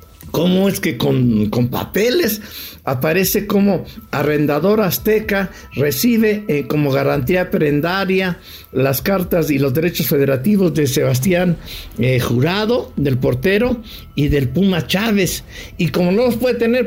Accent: Mexican